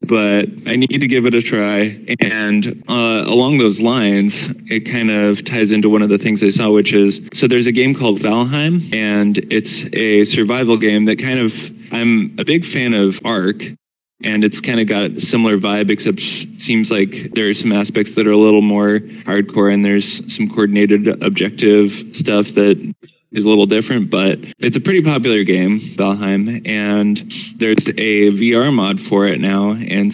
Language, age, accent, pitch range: English, 20-39, American, 100-120 Hz